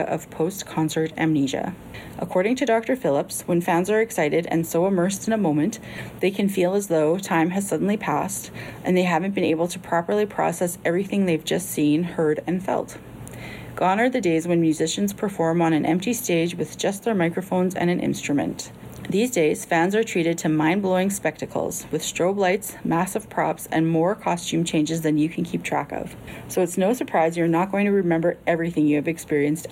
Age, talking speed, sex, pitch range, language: 30-49, 190 wpm, female, 160-195 Hz, English